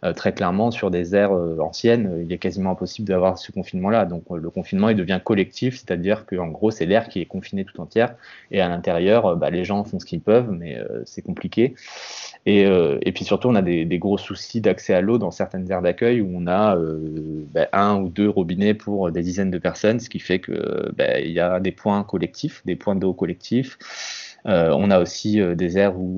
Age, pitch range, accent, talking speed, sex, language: 20-39, 90-110 Hz, French, 220 wpm, male, French